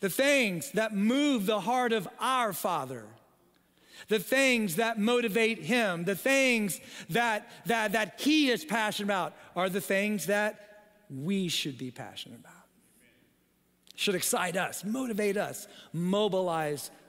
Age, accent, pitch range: 40-59, American, 190-220 Hz